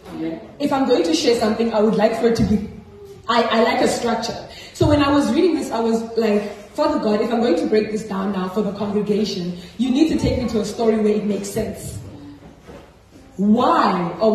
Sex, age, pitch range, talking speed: female, 20-39, 210-250 Hz, 225 wpm